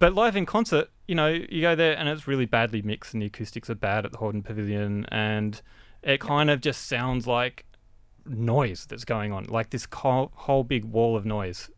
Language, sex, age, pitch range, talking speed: English, male, 30-49, 105-135 Hz, 210 wpm